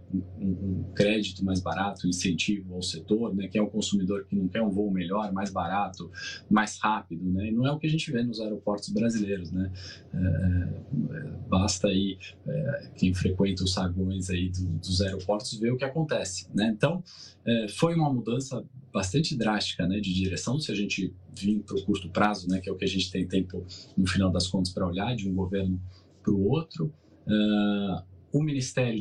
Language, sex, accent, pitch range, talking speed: Portuguese, male, Brazilian, 95-115 Hz, 195 wpm